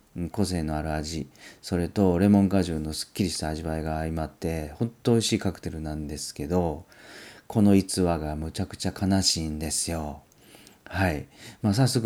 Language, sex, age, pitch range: Japanese, male, 40-59, 80-100 Hz